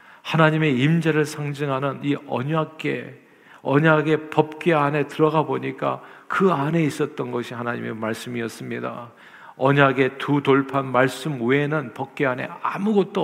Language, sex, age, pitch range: Korean, male, 50-69, 135-170 Hz